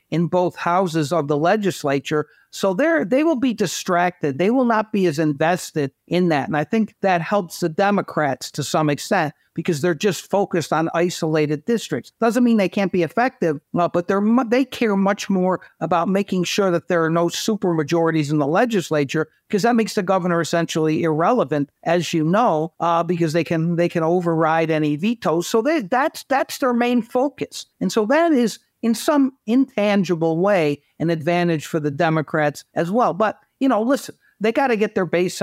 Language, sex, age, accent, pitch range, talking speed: English, male, 60-79, American, 160-205 Hz, 190 wpm